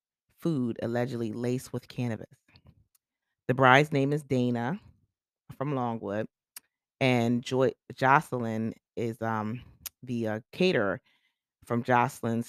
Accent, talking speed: American, 100 wpm